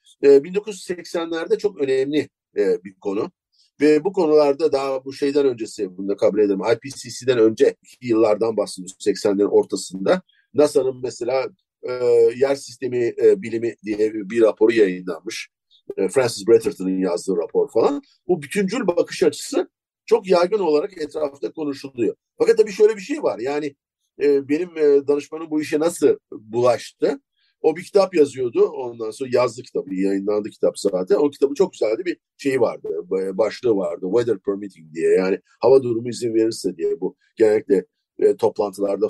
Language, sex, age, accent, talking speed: Turkish, male, 50-69, native, 140 wpm